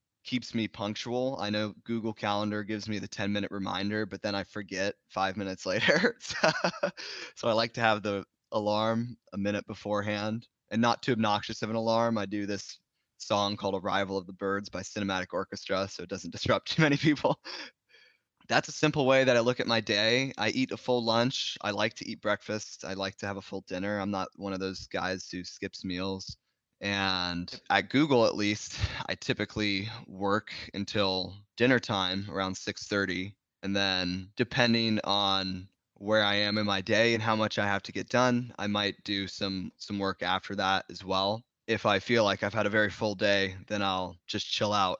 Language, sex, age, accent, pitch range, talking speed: English, male, 20-39, American, 95-110 Hz, 200 wpm